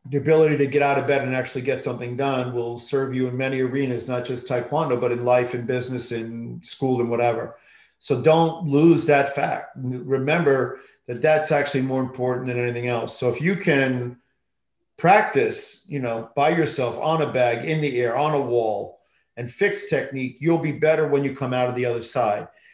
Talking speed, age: 200 wpm, 50-69